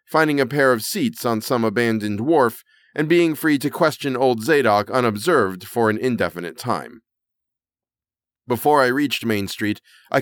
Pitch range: 105-130 Hz